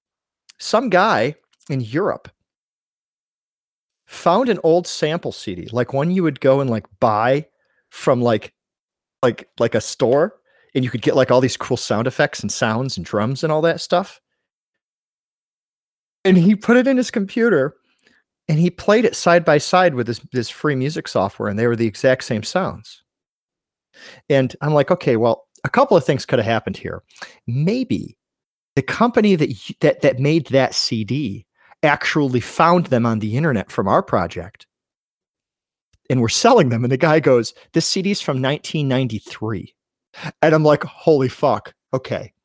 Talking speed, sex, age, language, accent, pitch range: 165 wpm, male, 40-59, English, American, 120-175 Hz